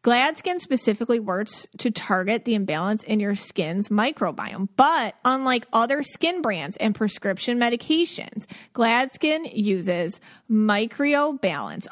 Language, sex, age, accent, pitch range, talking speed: English, female, 30-49, American, 200-250 Hz, 110 wpm